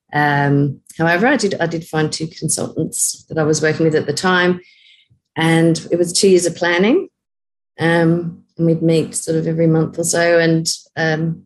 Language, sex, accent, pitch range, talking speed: English, female, Australian, 155-185 Hz, 190 wpm